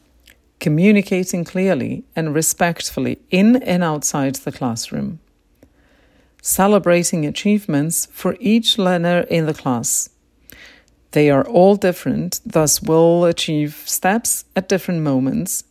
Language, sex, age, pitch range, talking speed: English, female, 50-69, 135-180 Hz, 105 wpm